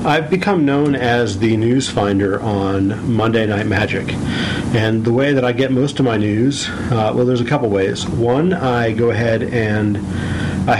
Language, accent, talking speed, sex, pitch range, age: English, American, 185 wpm, male, 110-130 Hz, 40-59